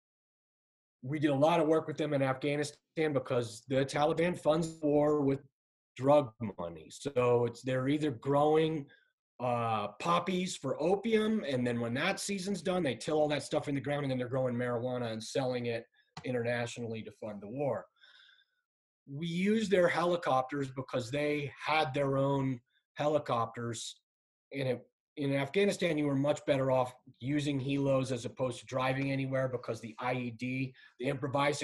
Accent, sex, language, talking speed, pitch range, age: American, male, English, 160 wpm, 125-155 Hz, 30-49